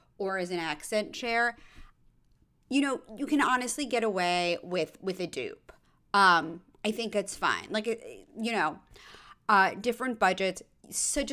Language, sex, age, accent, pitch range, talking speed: English, female, 30-49, American, 195-290 Hz, 150 wpm